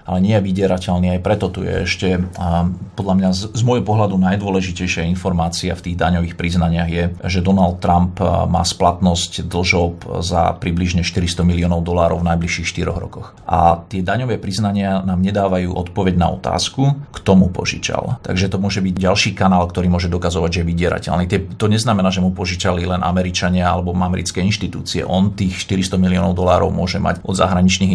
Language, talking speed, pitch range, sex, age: Slovak, 170 wpm, 90-100 Hz, male, 40-59